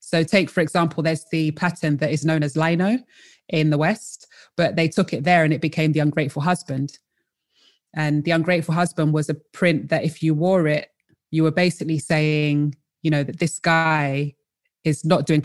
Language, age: English, 20-39